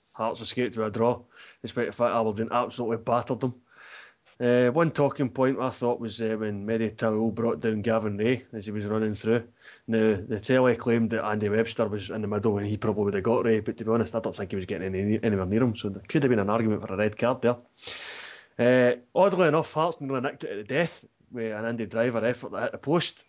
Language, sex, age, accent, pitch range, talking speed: English, male, 20-39, British, 105-125 Hz, 240 wpm